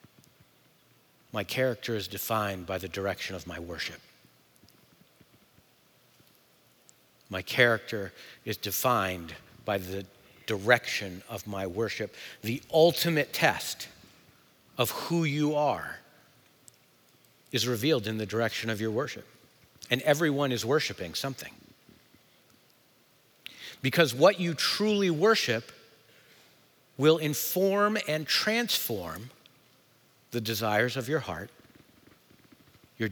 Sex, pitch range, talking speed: male, 105-140 Hz, 100 wpm